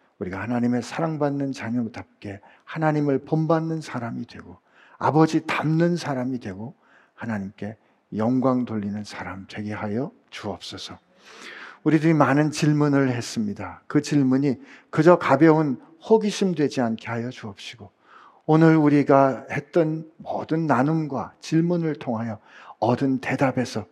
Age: 50-69